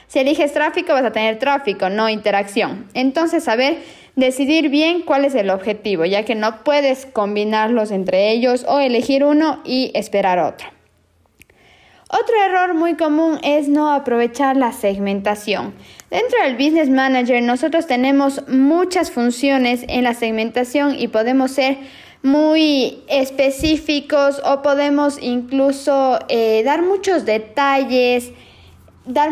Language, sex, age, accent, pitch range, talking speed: Spanish, female, 20-39, Mexican, 240-310 Hz, 130 wpm